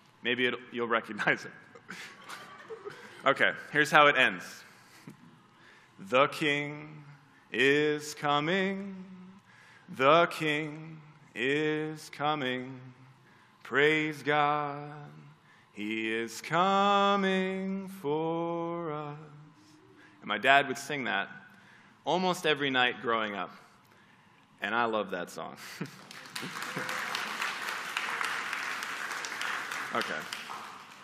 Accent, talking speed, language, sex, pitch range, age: American, 80 wpm, English, male, 135-180 Hz, 20-39